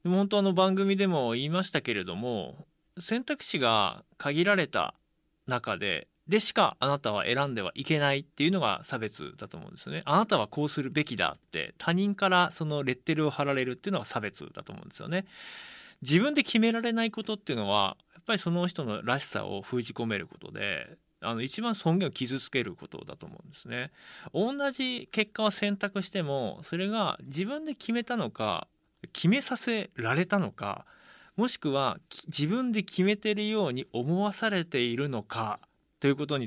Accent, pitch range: native, 140-210 Hz